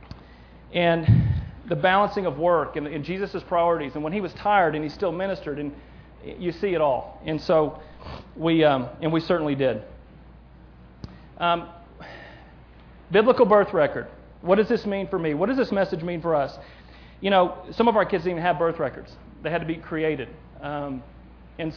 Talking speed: 180 wpm